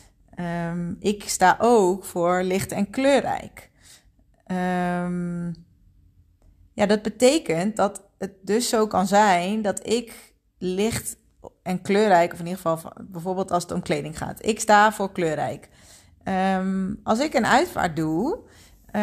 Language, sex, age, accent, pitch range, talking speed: Dutch, female, 30-49, Dutch, 175-220 Hz, 140 wpm